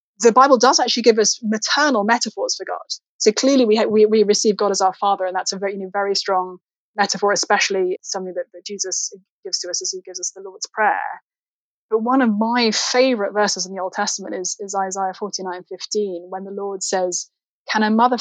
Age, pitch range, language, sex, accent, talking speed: 20-39, 195-245 Hz, English, female, British, 225 wpm